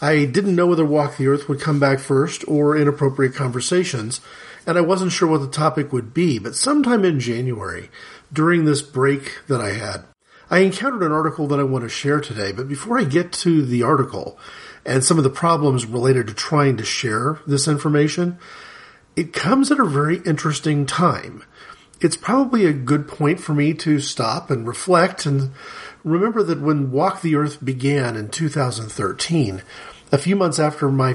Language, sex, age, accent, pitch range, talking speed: English, male, 40-59, American, 135-170 Hz, 185 wpm